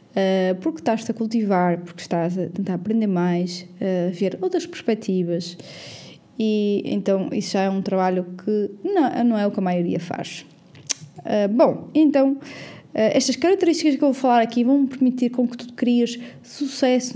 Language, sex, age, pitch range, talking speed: Portuguese, female, 20-39, 200-260 Hz, 175 wpm